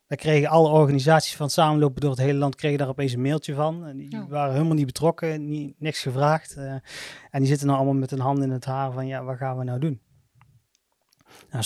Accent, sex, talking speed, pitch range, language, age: Dutch, male, 230 wpm, 130-150 Hz, Dutch, 20-39